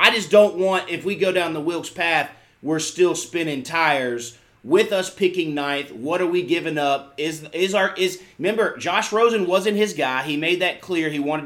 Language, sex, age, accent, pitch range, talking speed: English, male, 30-49, American, 140-185 Hz, 210 wpm